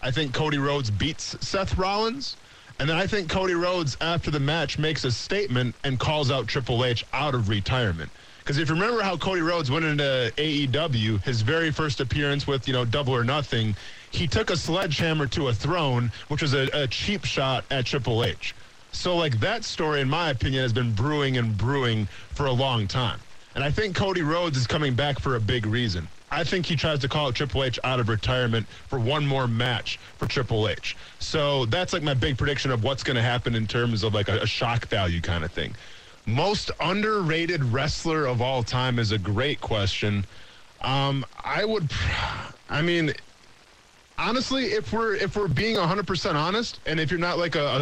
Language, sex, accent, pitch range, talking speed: English, male, American, 115-160 Hz, 200 wpm